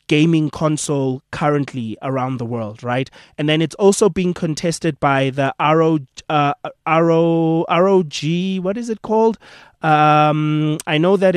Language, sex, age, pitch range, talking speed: English, male, 20-39, 140-180 Hz, 130 wpm